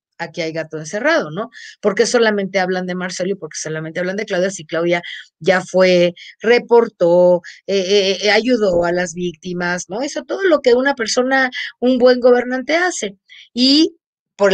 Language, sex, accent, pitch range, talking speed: Spanish, female, Mexican, 175-215 Hz, 170 wpm